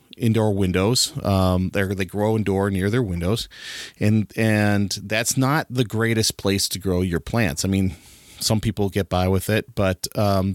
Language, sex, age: English, male, 30-49